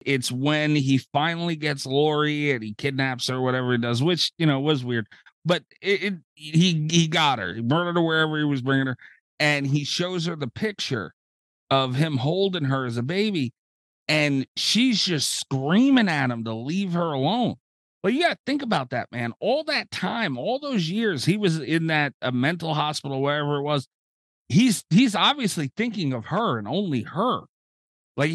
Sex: male